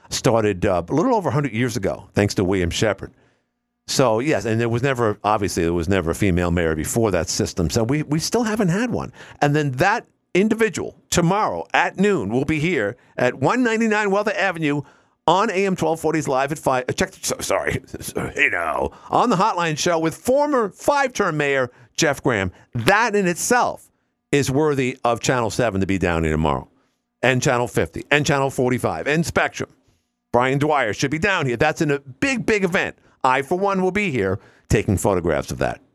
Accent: American